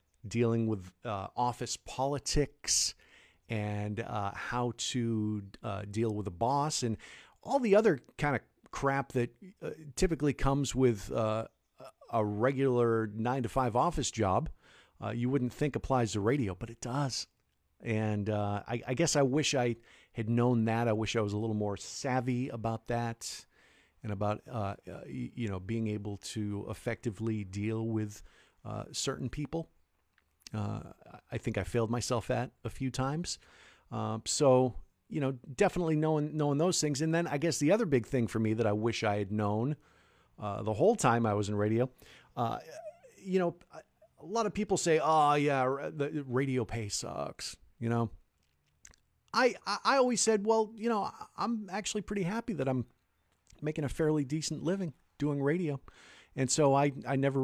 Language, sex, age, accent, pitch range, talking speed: English, male, 50-69, American, 110-145 Hz, 170 wpm